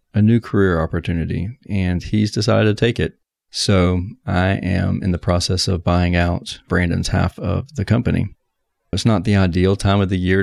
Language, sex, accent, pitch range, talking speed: English, male, American, 90-100 Hz, 185 wpm